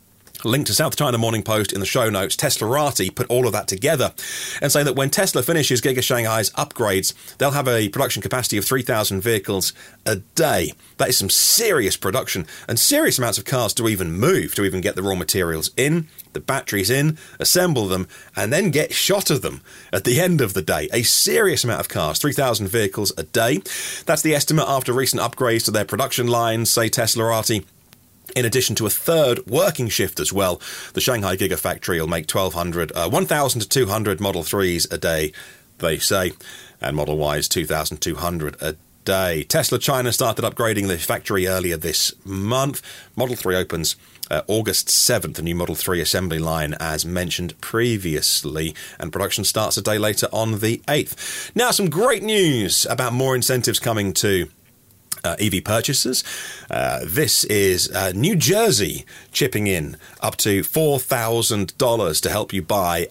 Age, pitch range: 30-49, 95-130 Hz